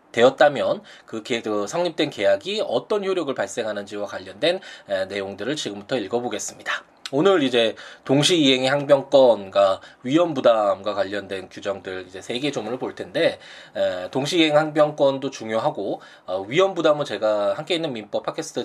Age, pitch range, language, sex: 20-39, 110-185 Hz, Korean, male